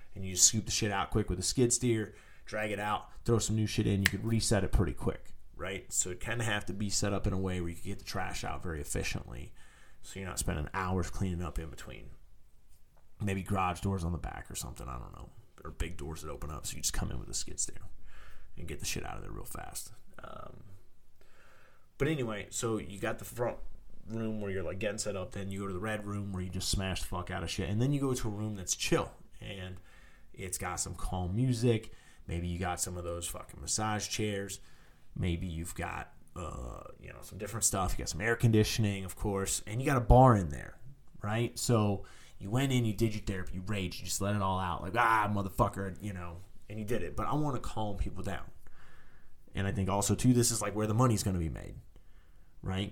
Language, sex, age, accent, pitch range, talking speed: English, male, 30-49, American, 85-110 Hz, 250 wpm